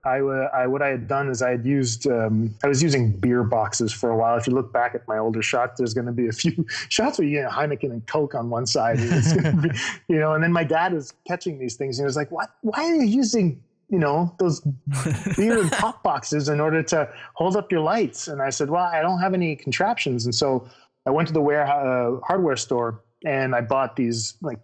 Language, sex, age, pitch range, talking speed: English, male, 20-39, 125-155 Hz, 250 wpm